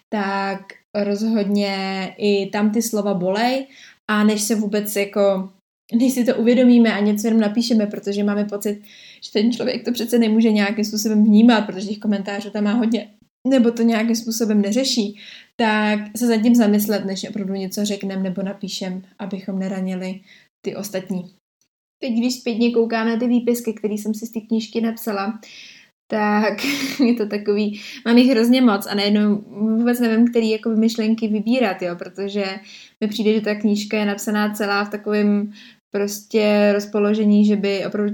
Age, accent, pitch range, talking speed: 20-39, native, 205-235 Hz, 165 wpm